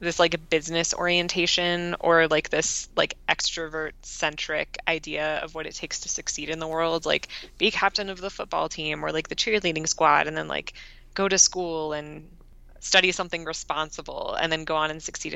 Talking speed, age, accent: 190 wpm, 20-39, American